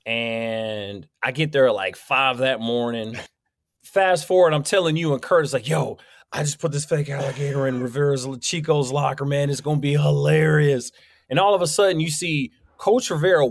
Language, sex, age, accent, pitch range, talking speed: English, male, 30-49, American, 145-225 Hz, 195 wpm